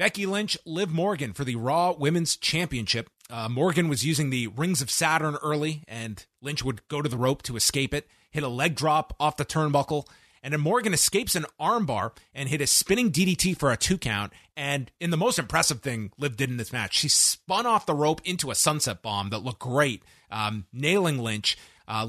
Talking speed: 210 wpm